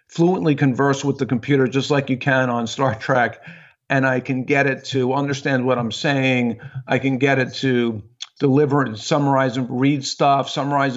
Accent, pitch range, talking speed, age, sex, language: American, 120-140 Hz, 185 wpm, 50-69, male, English